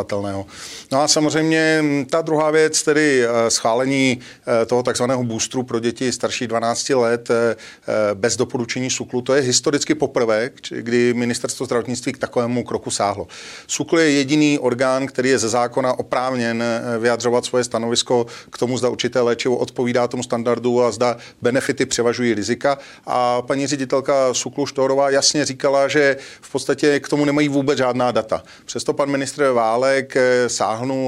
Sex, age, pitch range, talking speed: male, 40-59, 120-140 Hz, 150 wpm